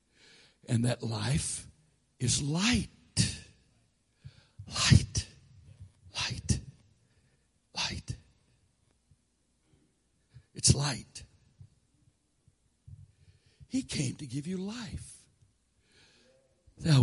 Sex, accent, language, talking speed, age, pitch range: male, American, English, 60 wpm, 60-79, 105-130 Hz